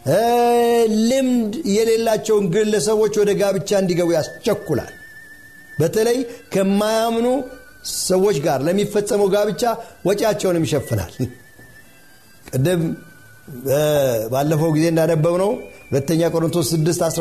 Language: Amharic